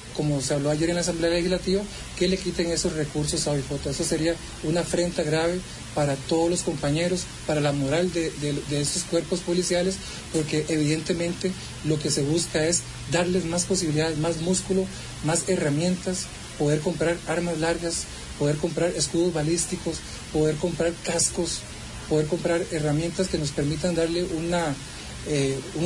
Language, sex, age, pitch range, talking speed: English, male, 40-59, 150-180 Hz, 155 wpm